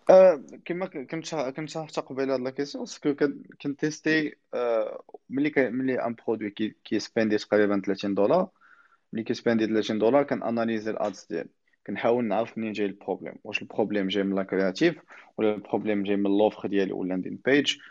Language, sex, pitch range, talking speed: Arabic, male, 105-125 Hz, 130 wpm